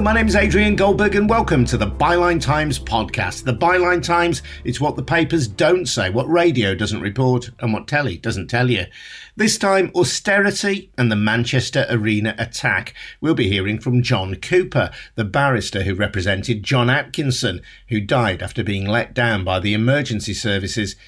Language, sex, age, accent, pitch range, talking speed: English, male, 50-69, British, 100-135 Hz, 175 wpm